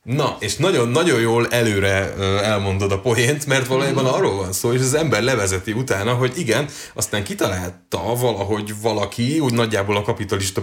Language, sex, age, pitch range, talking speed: Hungarian, male, 30-49, 100-130 Hz, 160 wpm